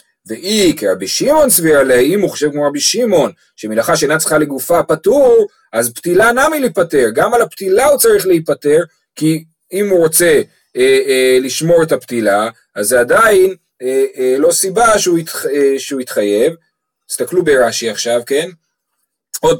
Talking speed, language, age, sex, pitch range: 155 wpm, Hebrew, 30-49, male, 150-235 Hz